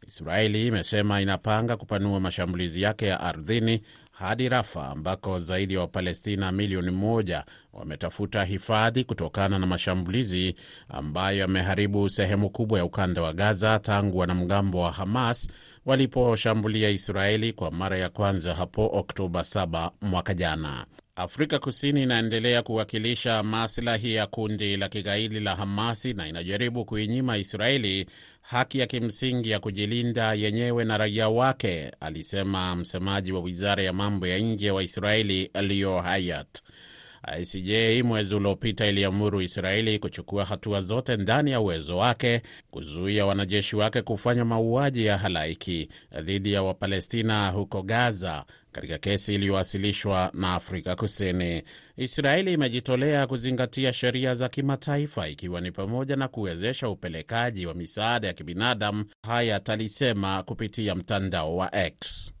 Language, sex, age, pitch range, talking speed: Swahili, male, 30-49, 95-115 Hz, 130 wpm